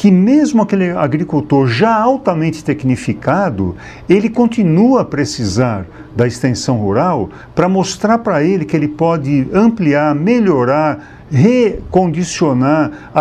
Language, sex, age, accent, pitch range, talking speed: English, male, 60-79, Brazilian, 130-165 Hz, 110 wpm